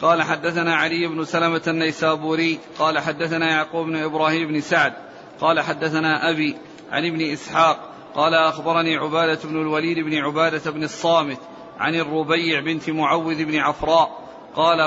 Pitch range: 155-170 Hz